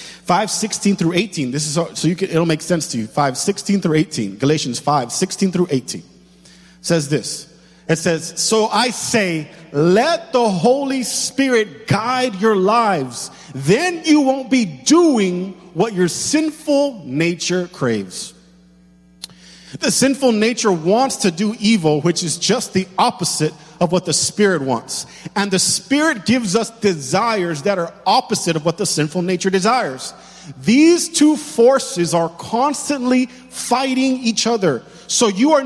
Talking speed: 150 wpm